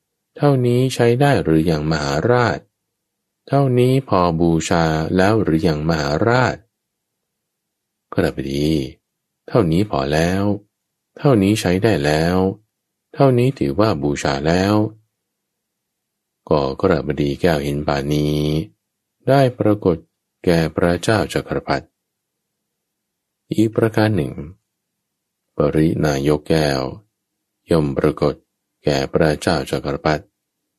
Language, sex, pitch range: English, male, 75-110 Hz